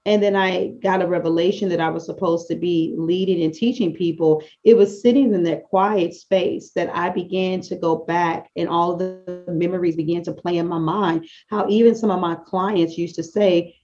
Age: 30-49